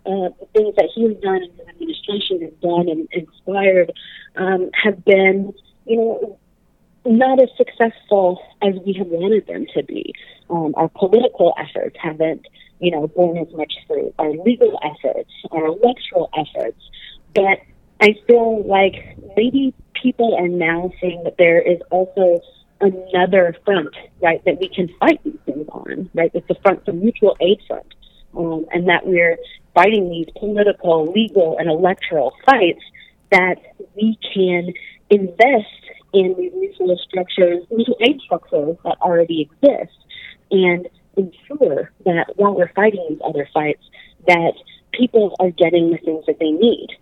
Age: 30-49